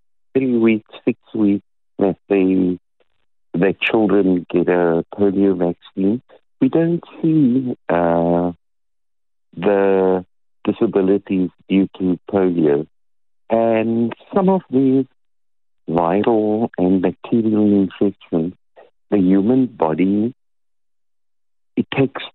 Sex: male